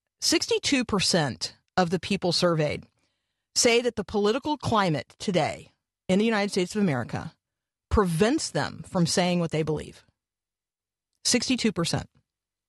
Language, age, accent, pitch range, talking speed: English, 40-59, American, 150-210 Hz, 135 wpm